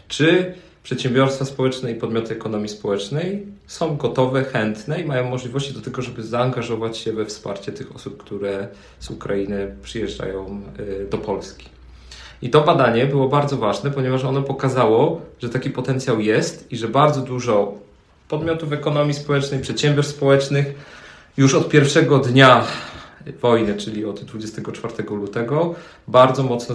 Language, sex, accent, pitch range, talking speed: Polish, male, native, 110-140 Hz, 135 wpm